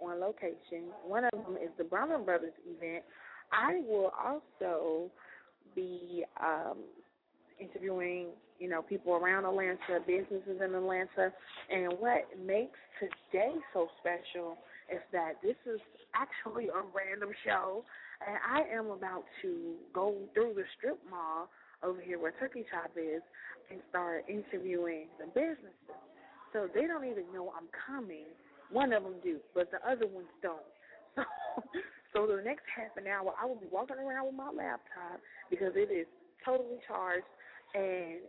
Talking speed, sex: 150 wpm, female